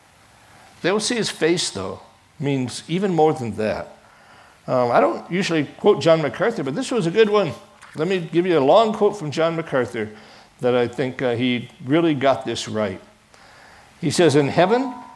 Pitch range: 135-195 Hz